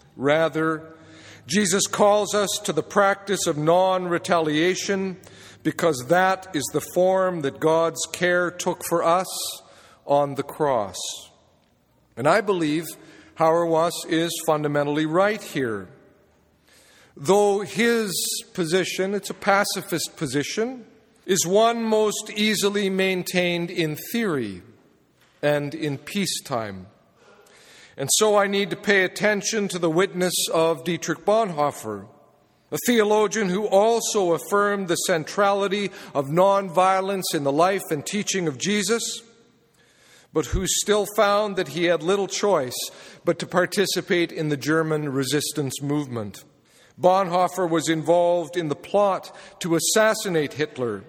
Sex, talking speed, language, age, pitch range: male, 120 wpm, English, 50-69, 160-200 Hz